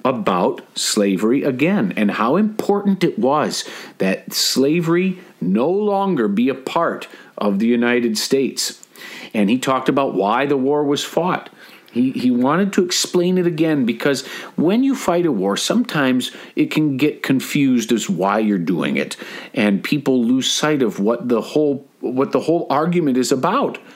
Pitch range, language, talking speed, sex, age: 120-195 Hz, English, 165 wpm, male, 50-69